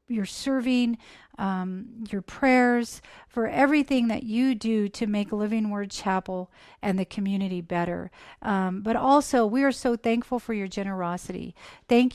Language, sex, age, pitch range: English, female, 40-59, 200-240 Hz